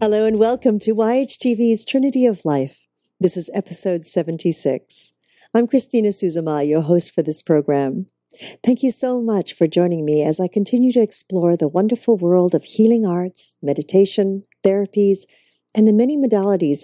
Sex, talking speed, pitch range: female, 155 wpm, 165-220 Hz